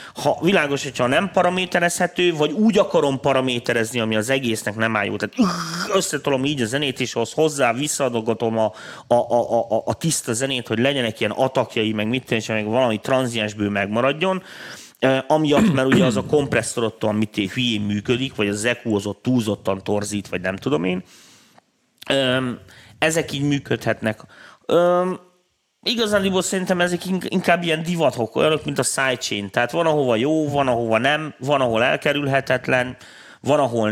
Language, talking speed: Hungarian, 155 wpm